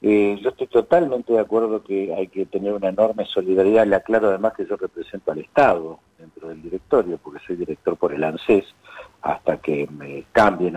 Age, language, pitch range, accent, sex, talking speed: 50-69, Spanish, 100-135 Hz, Argentinian, male, 190 wpm